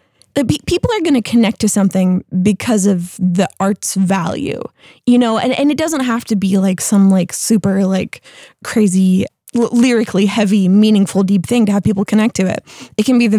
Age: 20-39